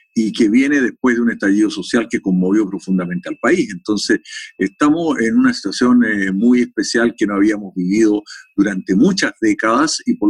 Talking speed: 175 wpm